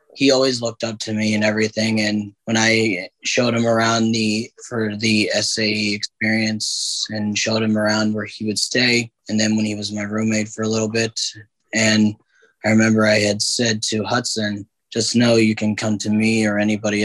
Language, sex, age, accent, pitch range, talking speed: English, male, 20-39, American, 100-110 Hz, 195 wpm